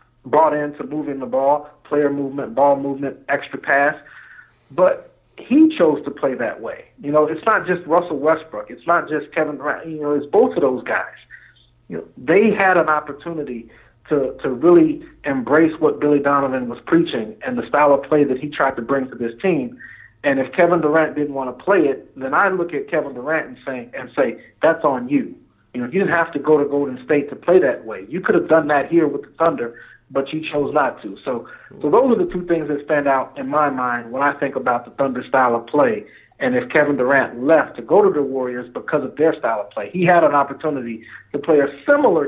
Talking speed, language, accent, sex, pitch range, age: 230 wpm, English, American, male, 130-155 Hz, 50-69